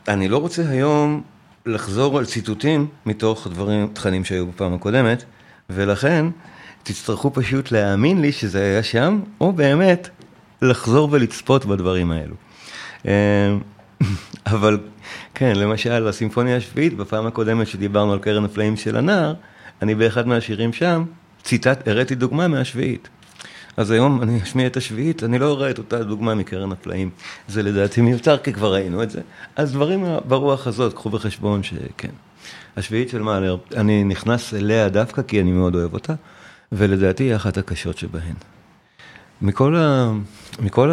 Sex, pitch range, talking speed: male, 100-130 Hz, 140 wpm